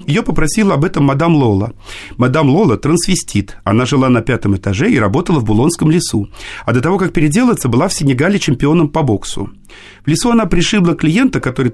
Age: 40-59